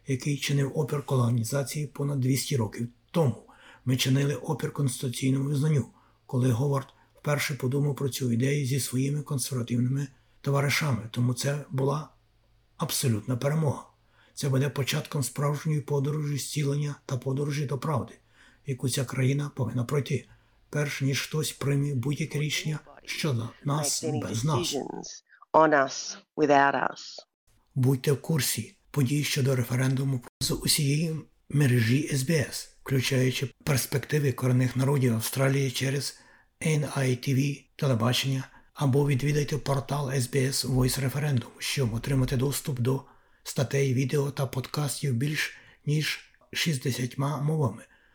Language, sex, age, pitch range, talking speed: Ukrainian, male, 50-69, 125-145 Hz, 110 wpm